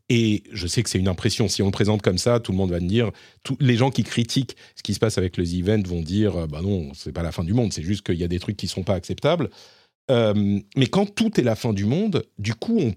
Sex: male